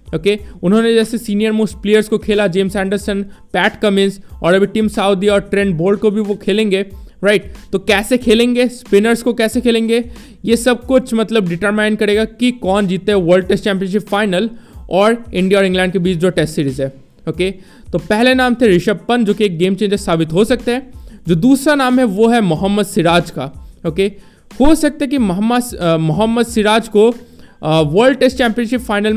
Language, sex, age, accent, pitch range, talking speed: Hindi, male, 20-39, native, 185-230 Hz, 195 wpm